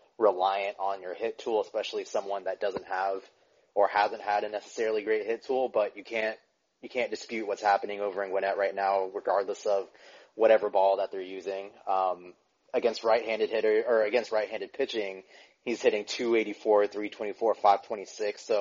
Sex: male